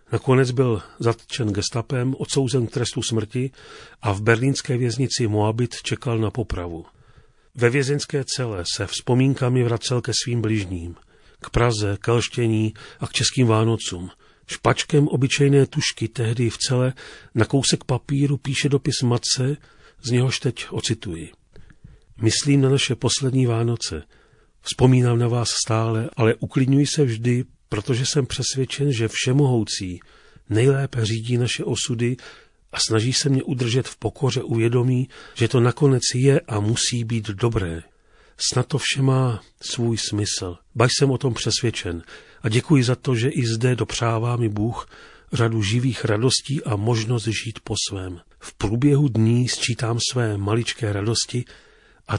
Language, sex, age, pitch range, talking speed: Czech, male, 40-59, 110-130 Hz, 140 wpm